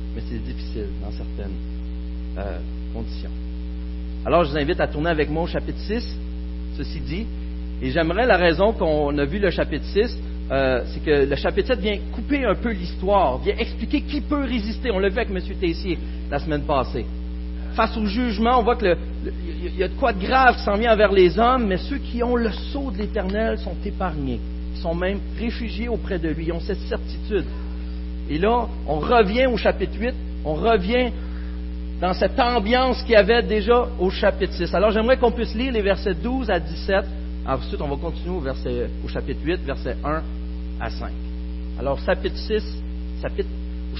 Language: French